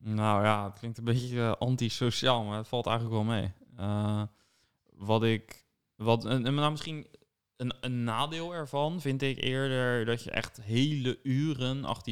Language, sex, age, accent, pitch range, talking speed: Dutch, male, 20-39, Dutch, 110-125 Hz, 175 wpm